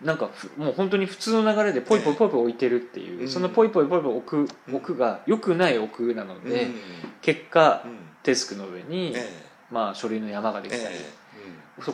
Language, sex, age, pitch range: Japanese, male, 20-39, 115-180 Hz